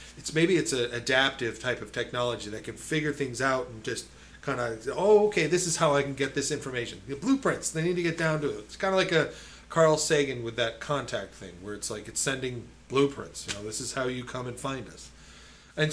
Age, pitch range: 30-49, 115-145 Hz